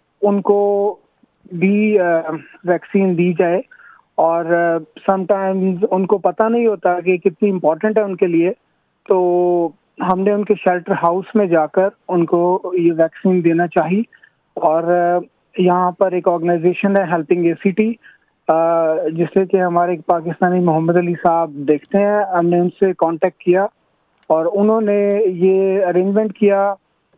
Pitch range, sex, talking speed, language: 170-195 Hz, male, 125 wpm, Urdu